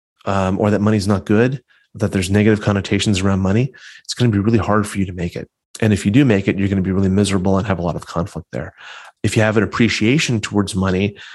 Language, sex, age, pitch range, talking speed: English, male, 30-49, 100-115 Hz, 260 wpm